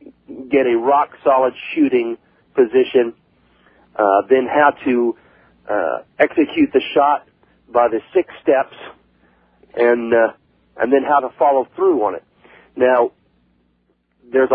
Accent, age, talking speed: American, 40-59, 125 wpm